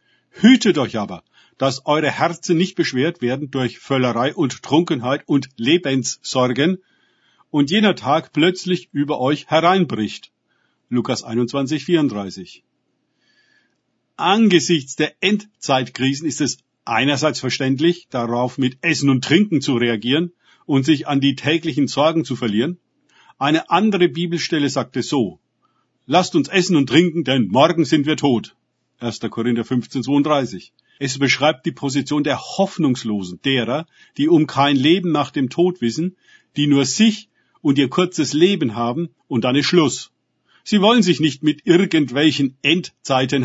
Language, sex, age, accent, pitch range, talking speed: German, male, 50-69, German, 125-170 Hz, 135 wpm